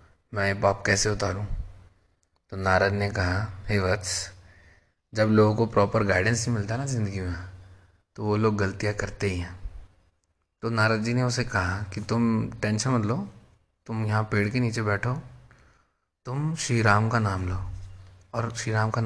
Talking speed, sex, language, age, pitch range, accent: 165 wpm, male, Hindi, 20-39, 95-115 Hz, native